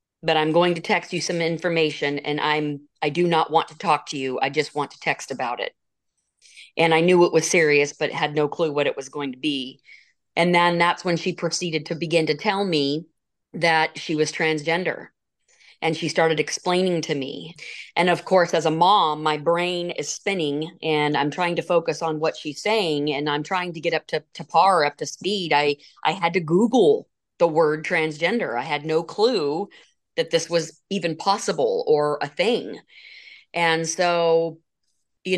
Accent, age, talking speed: American, 40-59, 195 wpm